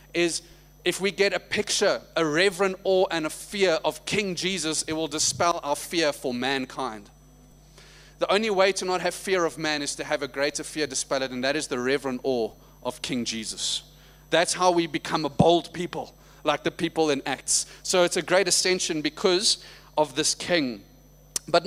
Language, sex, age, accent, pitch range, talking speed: English, male, 30-49, South African, 150-195 Hz, 195 wpm